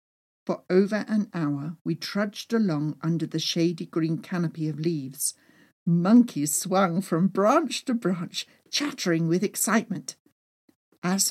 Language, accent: English, British